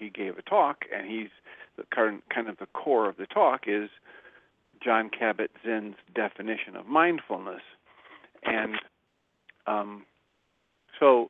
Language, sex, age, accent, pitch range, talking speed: English, male, 50-69, American, 105-120 Hz, 125 wpm